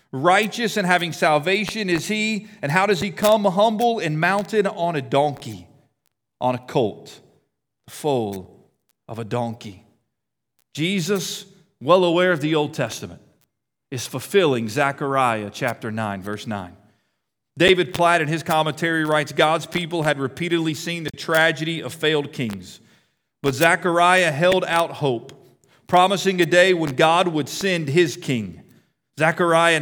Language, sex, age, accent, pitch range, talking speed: English, male, 40-59, American, 145-195 Hz, 140 wpm